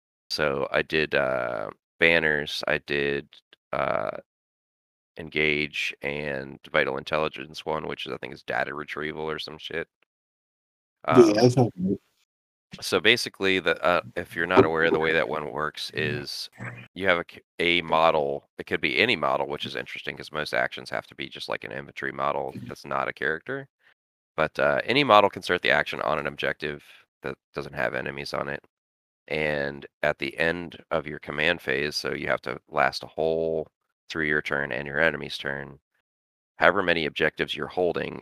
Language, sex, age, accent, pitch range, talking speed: English, male, 30-49, American, 70-85 Hz, 175 wpm